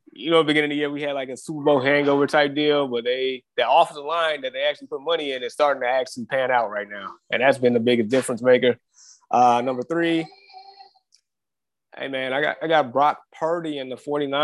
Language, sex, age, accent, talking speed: English, male, 20-39, American, 235 wpm